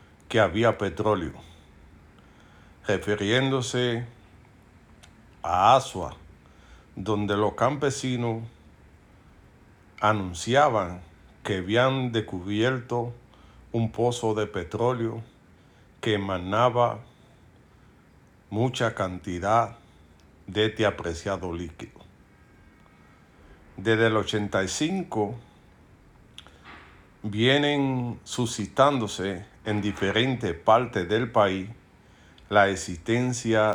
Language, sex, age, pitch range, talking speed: Spanish, male, 50-69, 95-120 Hz, 65 wpm